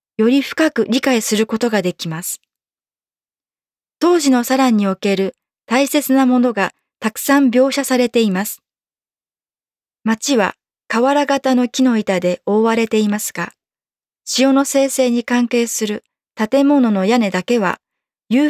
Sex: female